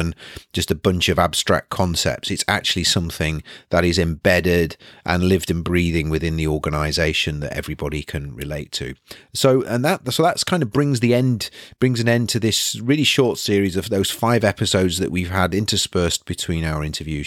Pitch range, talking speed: 80-100 Hz, 185 wpm